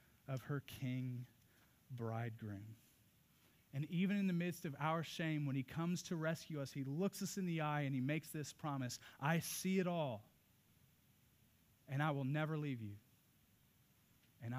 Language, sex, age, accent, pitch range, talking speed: English, male, 30-49, American, 125-160 Hz, 165 wpm